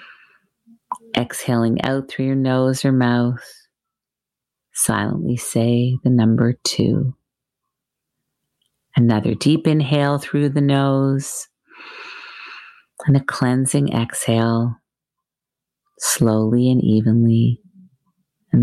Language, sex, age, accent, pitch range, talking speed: English, female, 40-59, American, 120-175 Hz, 85 wpm